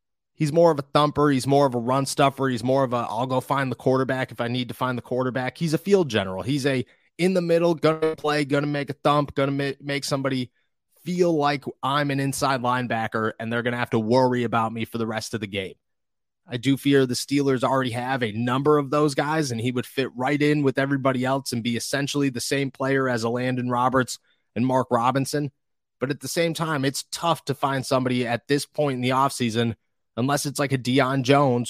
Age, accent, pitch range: 30-49, American, 120-145 Hz